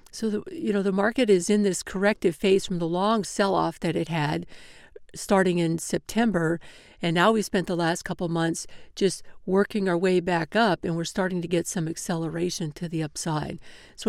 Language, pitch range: English, 170-195 Hz